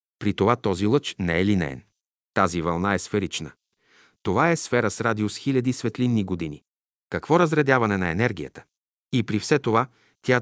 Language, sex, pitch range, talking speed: Bulgarian, male, 95-125 Hz, 160 wpm